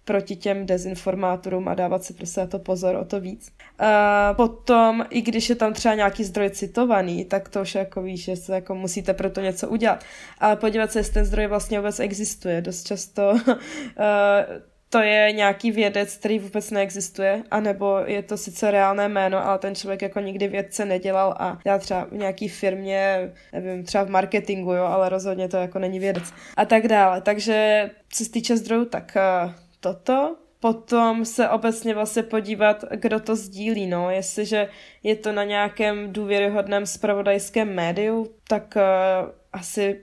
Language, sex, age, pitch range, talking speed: Slovak, female, 20-39, 190-215 Hz, 170 wpm